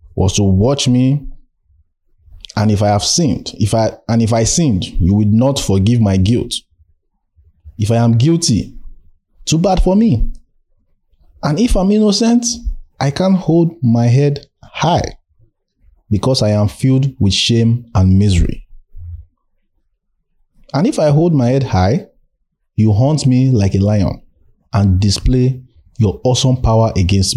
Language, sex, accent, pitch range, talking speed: English, male, Nigerian, 95-145 Hz, 145 wpm